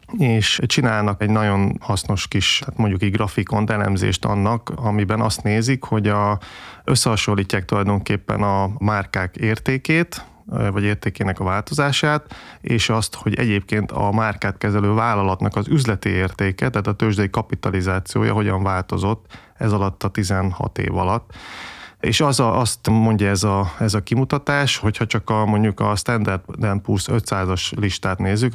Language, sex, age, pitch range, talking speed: Hungarian, male, 30-49, 100-115 Hz, 140 wpm